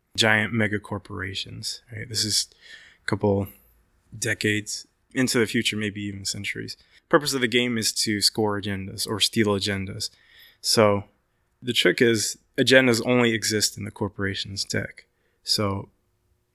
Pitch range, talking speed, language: 100-115 Hz, 140 wpm, English